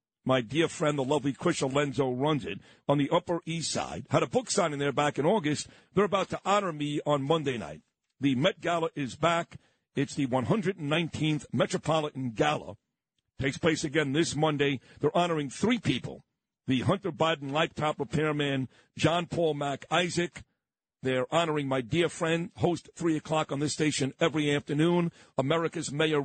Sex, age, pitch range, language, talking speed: male, 50-69, 140-175 Hz, English, 165 wpm